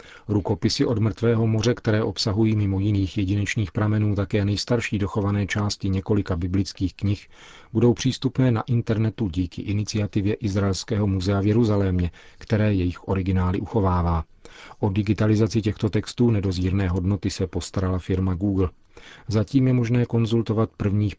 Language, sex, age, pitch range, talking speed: Czech, male, 40-59, 95-110 Hz, 130 wpm